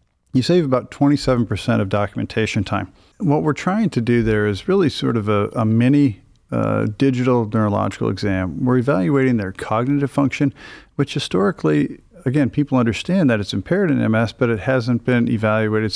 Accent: American